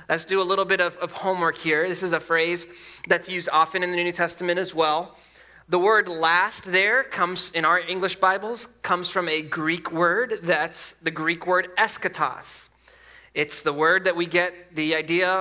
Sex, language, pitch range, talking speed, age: male, English, 165-195 Hz, 190 wpm, 20-39